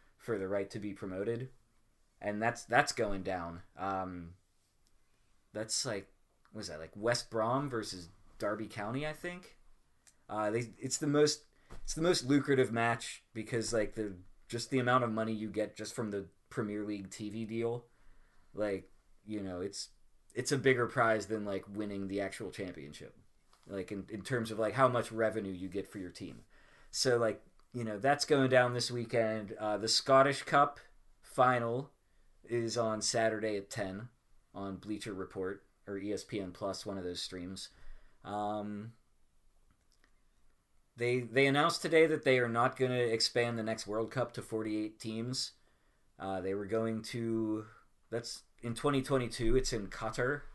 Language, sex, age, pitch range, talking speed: English, male, 20-39, 100-120 Hz, 165 wpm